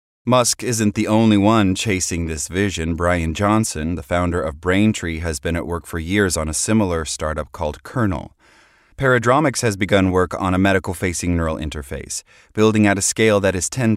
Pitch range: 85-110 Hz